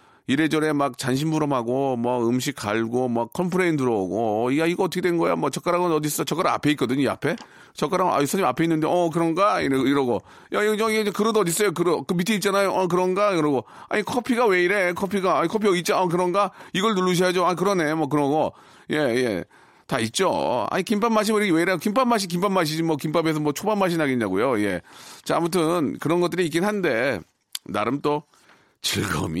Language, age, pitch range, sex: Korean, 40-59, 150-205 Hz, male